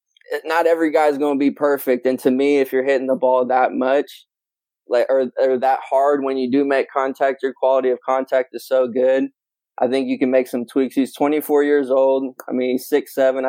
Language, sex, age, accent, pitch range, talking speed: English, male, 20-39, American, 130-140 Hz, 225 wpm